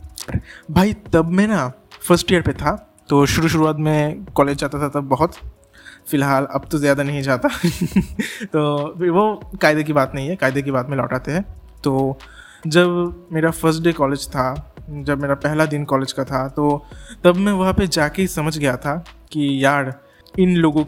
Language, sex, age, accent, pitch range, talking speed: Hindi, male, 20-39, native, 140-165 Hz, 185 wpm